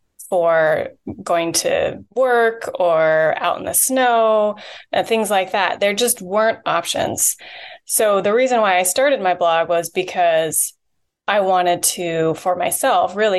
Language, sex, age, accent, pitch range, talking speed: English, female, 20-39, American, 180-230 Hz, 150 wpm